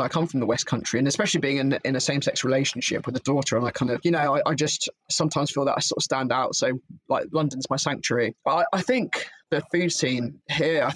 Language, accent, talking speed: English, British, 270 wpm